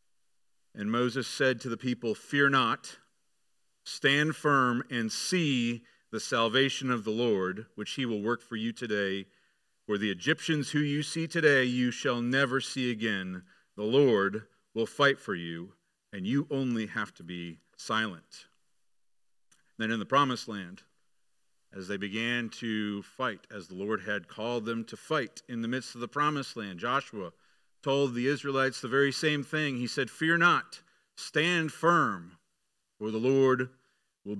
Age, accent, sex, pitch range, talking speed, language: 40-59, American, male, 115-145 Hz, 160 wpm, English